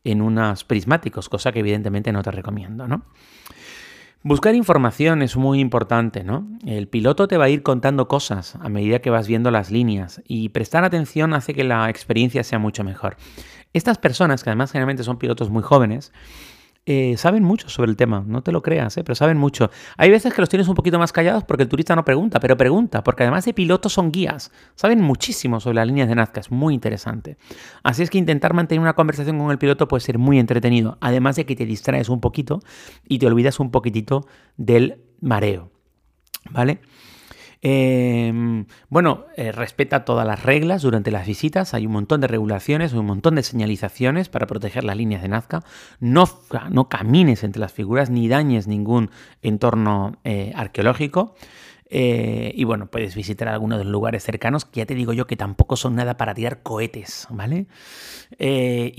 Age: 30-49